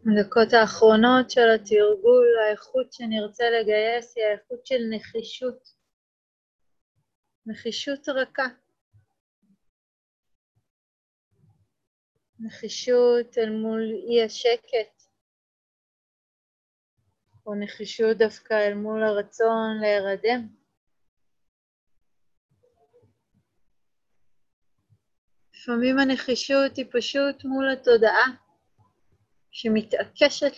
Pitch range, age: 185-245 Hz, 30-49